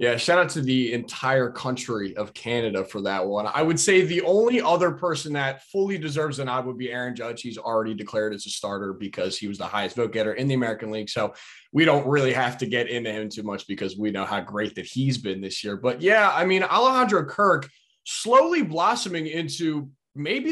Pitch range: 120-175 Hz